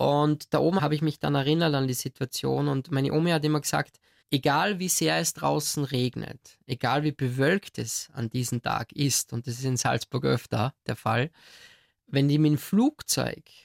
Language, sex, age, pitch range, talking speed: German, male, 20-39, 130-155 Hz, 195 wpm